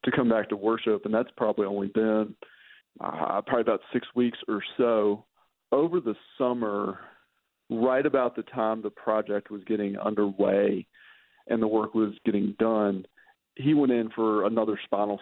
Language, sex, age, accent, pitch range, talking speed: English, male, 40-59, American, 105-120 Hz, 160 wpm